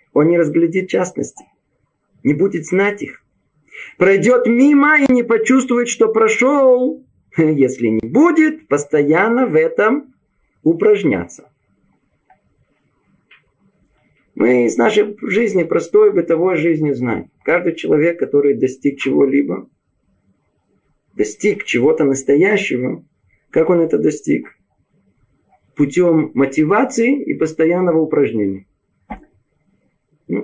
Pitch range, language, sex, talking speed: 135-205 Hz, Russian, male, 95 wpm